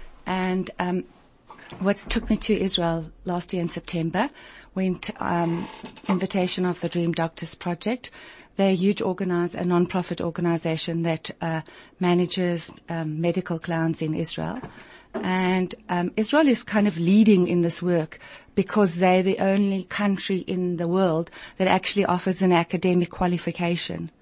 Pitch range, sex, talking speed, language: 175-200 Hz, female, 145 wpm, English